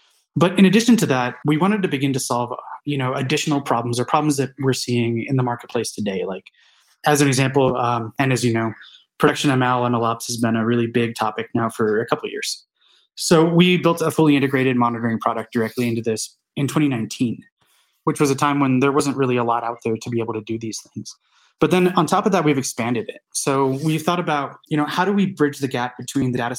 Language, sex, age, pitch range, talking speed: English, male, 20-39, 120-150 Hz, 235 wpm